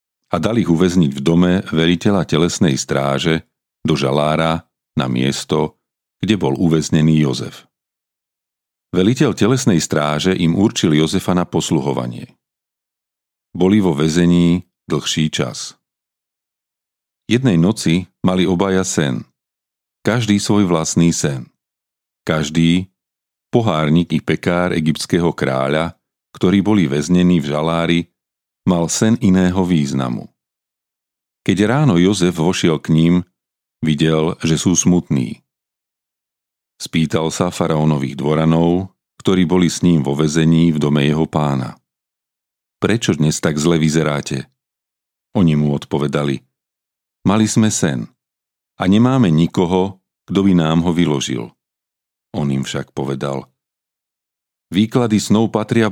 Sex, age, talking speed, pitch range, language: male, 40-59, 110 wpm, 75-95 Hz, Slovak